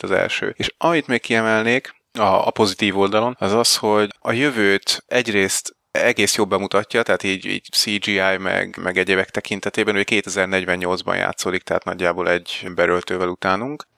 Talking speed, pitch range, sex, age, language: 145 wpm, 95-110 Hz, male, 30-49, Hungarian